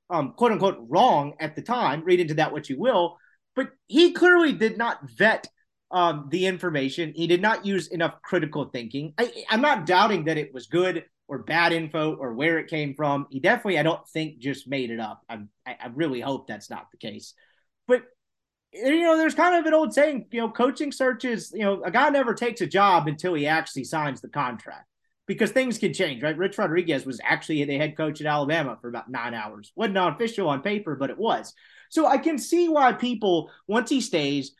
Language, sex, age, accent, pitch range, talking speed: English, male, 30-49, American, 150-230 Hz, 215 wpm